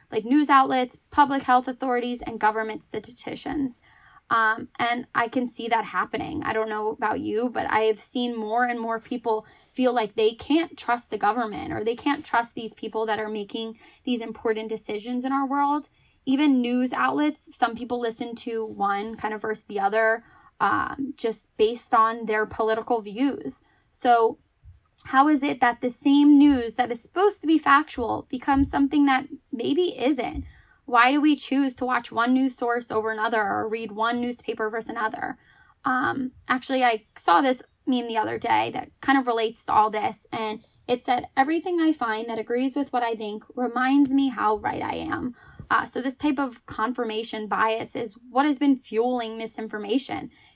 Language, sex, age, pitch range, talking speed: English, female, 10-29, 225-275 Hz, 180 wpm